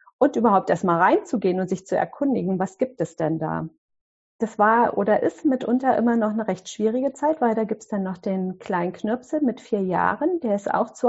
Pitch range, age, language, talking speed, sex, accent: 180-225 Hz, 40-59, German, 220 wpm, female, German